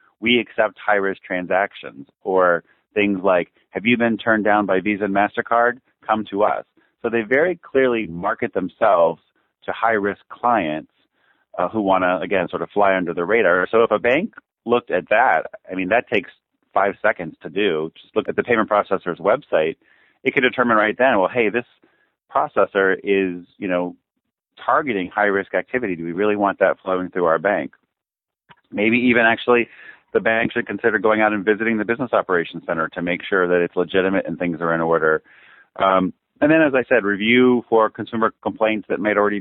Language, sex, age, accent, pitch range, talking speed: English, male, 40-59, American, 90-110 Hz, 190 wpm